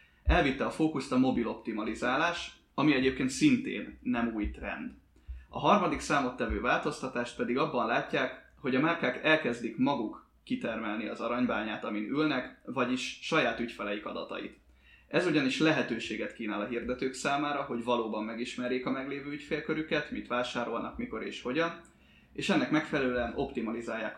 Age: 20-39